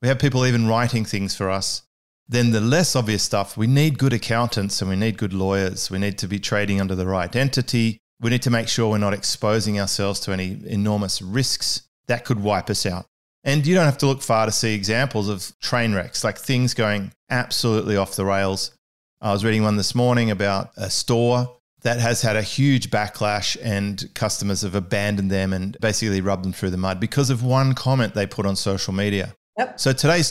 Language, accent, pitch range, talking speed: English, Australian, 100-125 Hz, 210 wpm